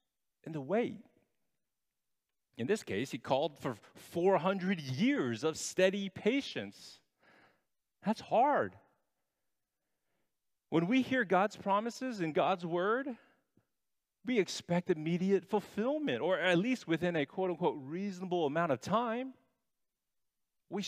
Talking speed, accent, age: 115 wpm, American, 40-59